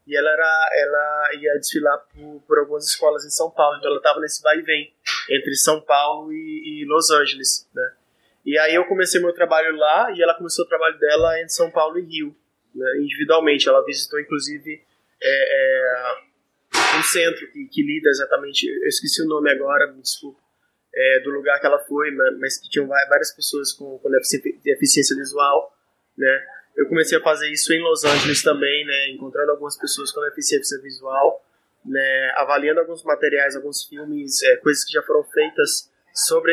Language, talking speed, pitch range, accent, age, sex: Portuguese, 180 wpm, 145-210 Hz, Brazilian, 20-39, male